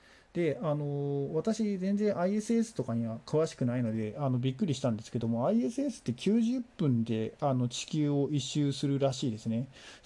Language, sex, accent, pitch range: Japanese, male, native, 120-160 Hz